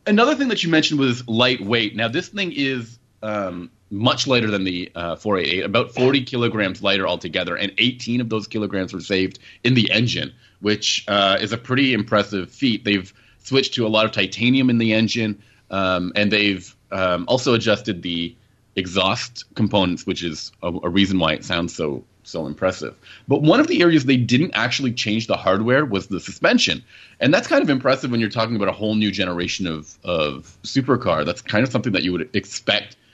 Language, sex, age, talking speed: English, male, 30-49, 195 wpm